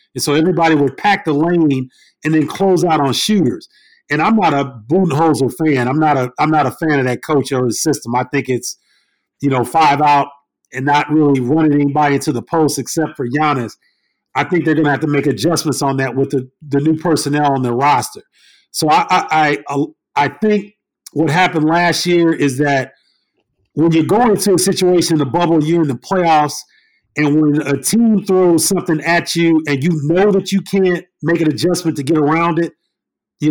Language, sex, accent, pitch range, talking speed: English, male, American, 145-175 Hz, 215 wpm